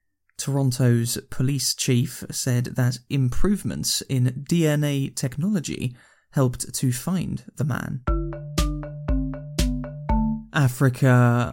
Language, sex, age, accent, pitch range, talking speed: English, male, 20-39, British, 120-140 Hz, 80 wpm